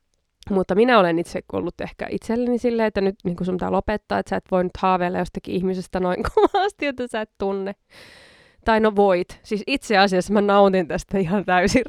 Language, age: Finnish, 20-39